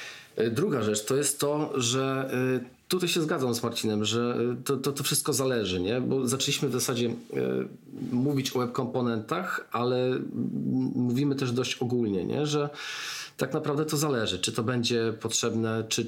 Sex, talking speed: male, 155 wpm